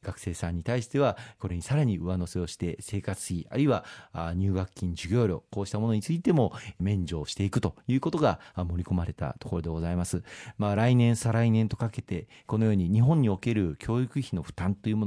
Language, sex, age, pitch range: Japanese, male, 40-59, 95-125 Hz